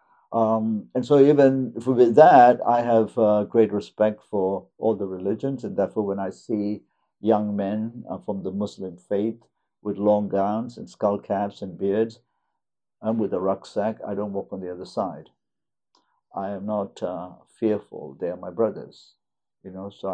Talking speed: 170 wpm